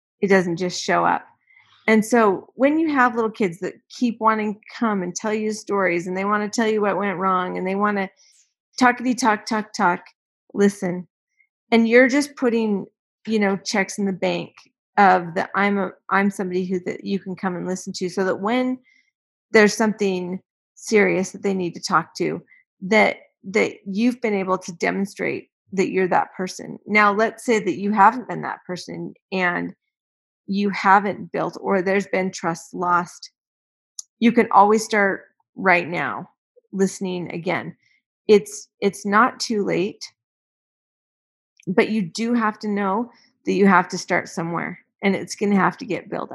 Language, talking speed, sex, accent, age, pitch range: English, 175 wpm, female, American, 40-59, 190-220 Hz